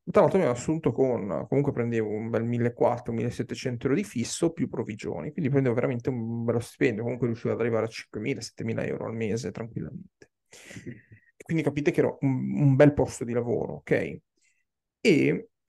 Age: 30-49